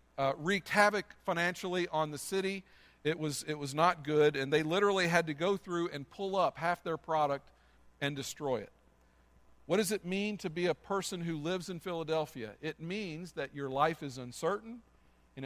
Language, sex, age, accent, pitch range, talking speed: English, male, 50-69, American, 140-185 Hz, 190 wpm